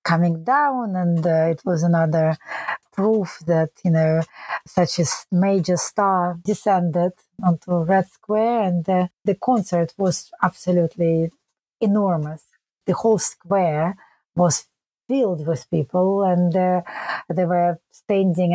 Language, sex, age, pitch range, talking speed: English, female, 30-49, 170-210 Hz, 125 wpm